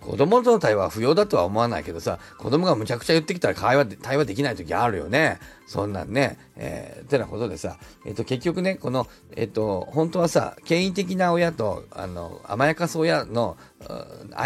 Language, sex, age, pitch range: Japanese, male, 40-59, 125-200 Hz